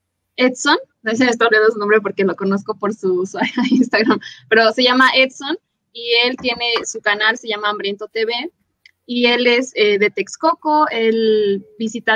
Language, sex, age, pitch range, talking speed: Spanish, female, 20-39, 210-255 Hz, 180 wpm